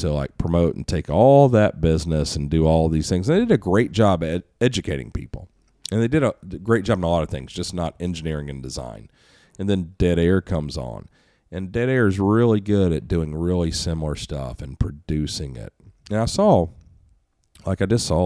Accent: American